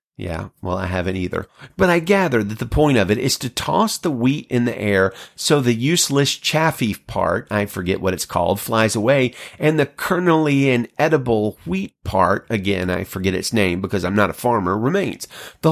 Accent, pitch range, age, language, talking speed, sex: American, 100-155 Hz, 30-49, English, 200 wpm, male